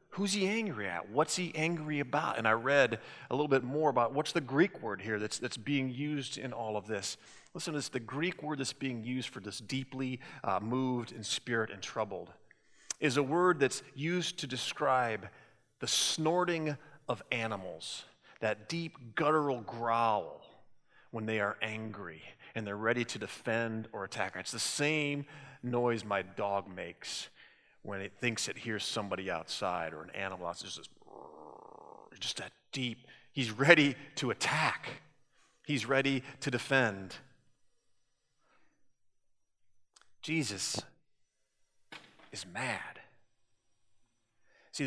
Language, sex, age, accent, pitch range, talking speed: English, male, 30-49, American, 110-145 Hz, 145 wpm